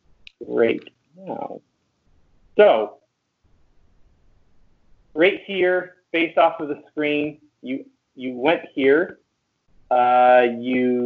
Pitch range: 115-140 Hz